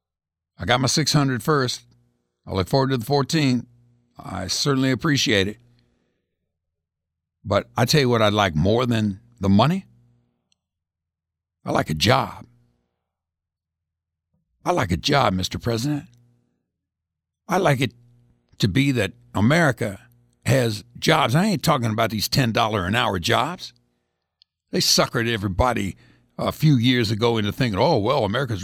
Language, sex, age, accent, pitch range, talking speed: English, male, 60-79, American, 85-135 Hz, 140 wpm